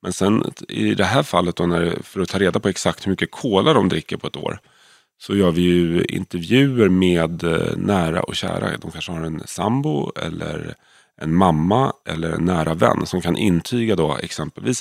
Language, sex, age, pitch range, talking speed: Swedish, male, 30-49, 80-95 Hz, 195 wpm